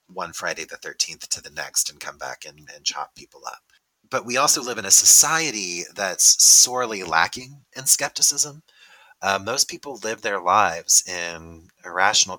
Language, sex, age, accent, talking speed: English, male, 30-49, American, 170 wpm